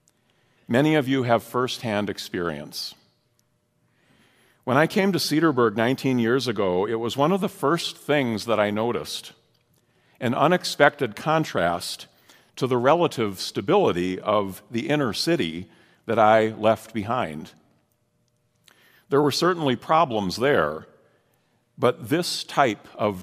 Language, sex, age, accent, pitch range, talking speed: English, male, 50-69, American, 110-150 Hz, 125 wpm